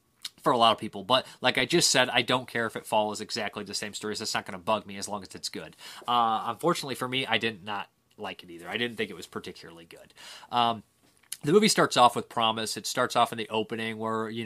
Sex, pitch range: male, 110-130 Hz